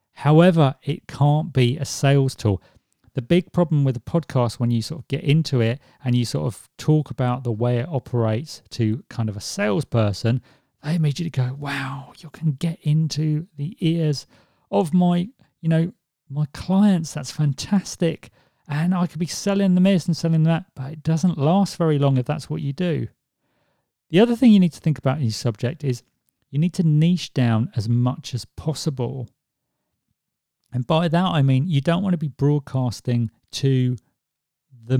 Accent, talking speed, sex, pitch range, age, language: British, 185 wpm, male, 120-155 Hz, 40-59, English